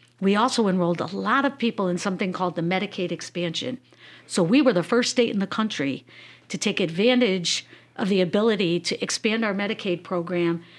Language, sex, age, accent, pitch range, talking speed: English, female, 50-69, American, 175-220 Hz, 185 wpm